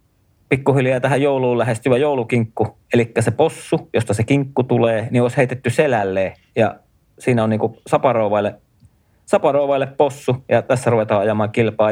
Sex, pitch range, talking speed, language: male, 110-135 Hz, 140 wpm, Finnish